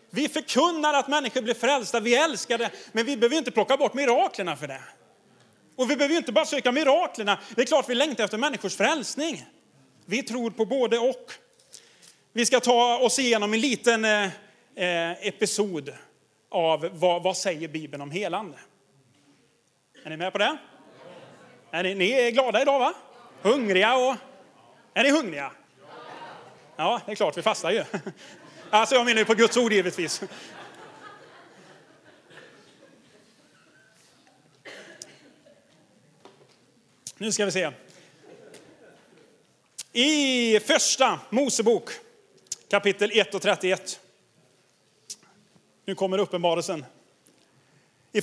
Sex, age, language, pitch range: male, 30-49, Swedish, 200-270 Hz